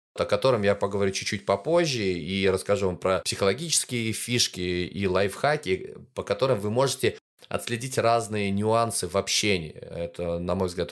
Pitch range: 90-120 Hz